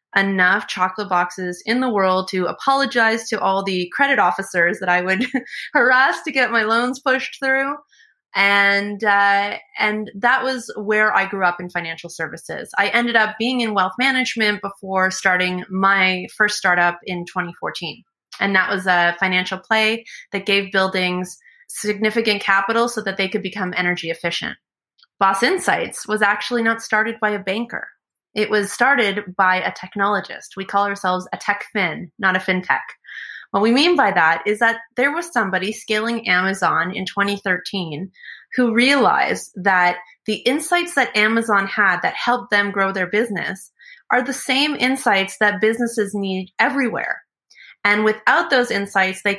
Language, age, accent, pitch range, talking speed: English, 20-39, American, 185-230 Hz, 160 wpm